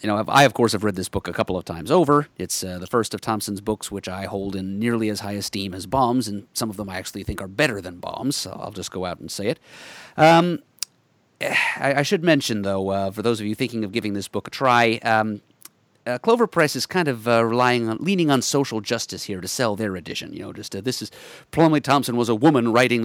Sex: male